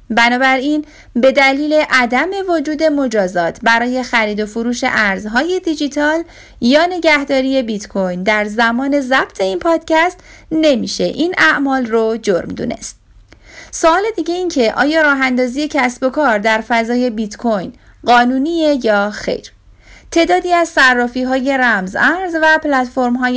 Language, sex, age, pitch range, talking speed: Persian, female, 30-49, 225-295 Hz, 125 wpm